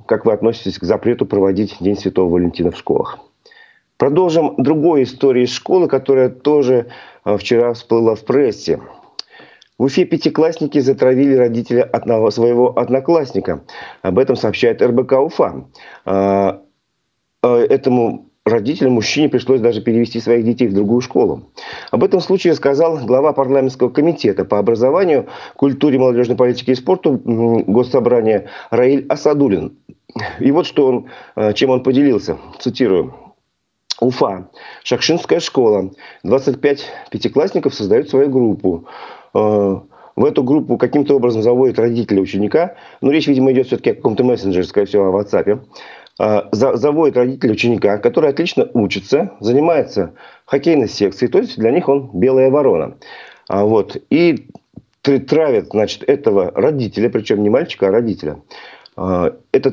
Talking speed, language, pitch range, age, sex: 125 wpm, Russian, 115-145 Hz, 40-59, male